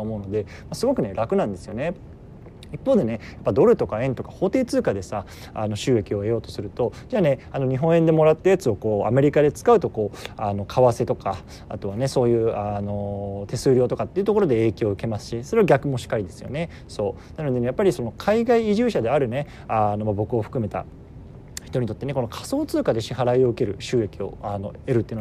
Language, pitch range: Japanese, 110-155 Hz